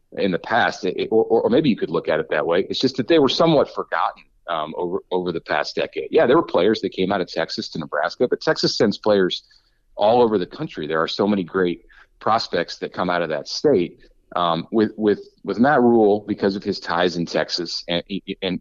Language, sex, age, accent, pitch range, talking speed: English, male, 30-49, American, 80-100 Hz, 230 wpm